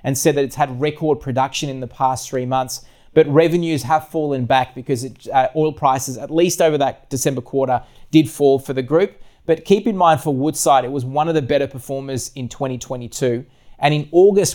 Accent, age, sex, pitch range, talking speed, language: Australian, 20-39, male, 125-150 Hz, 205 wpm, English